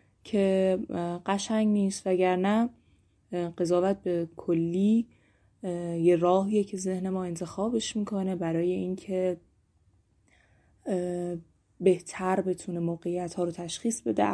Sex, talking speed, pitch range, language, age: female, 95 wpm, 175-200 Hz, Persian, 20-39